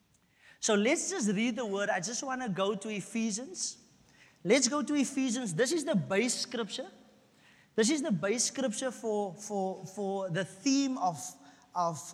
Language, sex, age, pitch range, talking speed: English, male, 30-49, 180-255 Hz, 170 wpm